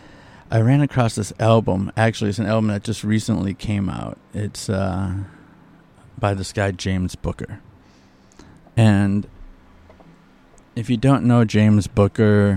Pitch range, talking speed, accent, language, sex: 90-105 Hz, 135 wpm, American, English, male